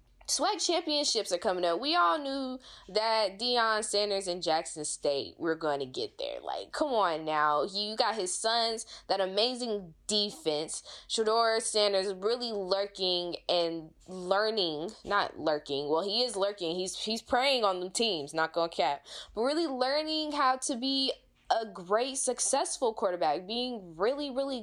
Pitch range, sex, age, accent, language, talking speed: 185-255 Hz, female, 10-29, American, English, 160 wpm